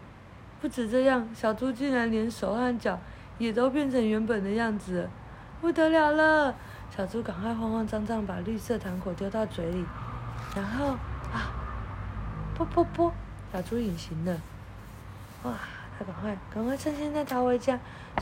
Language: Chinese